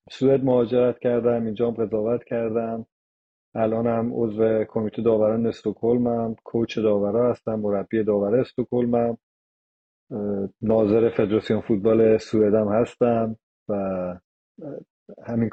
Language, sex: Persian, male